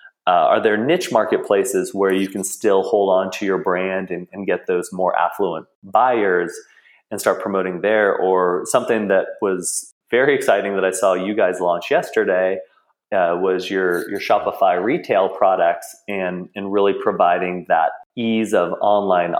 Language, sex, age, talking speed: English, male, 30-49, 165 wpm